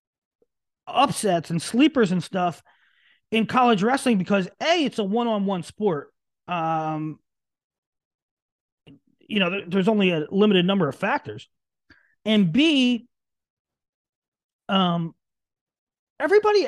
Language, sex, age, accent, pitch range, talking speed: English, male, 30-49, American, 185-245 Hz, 110 wpm